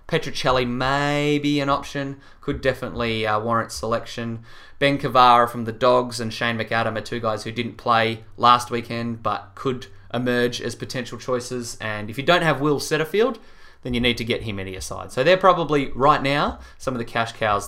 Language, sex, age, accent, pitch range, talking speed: English, male, 20-39, Australian, 115-145 Hz, 195 wpm